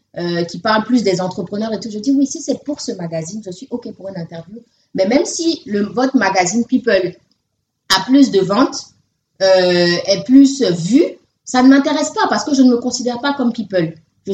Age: 30-49